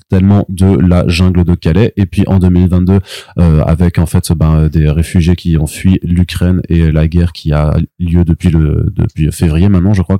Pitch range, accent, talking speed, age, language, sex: 90-105 Hz, French, 200 wpm, 20-39, French, male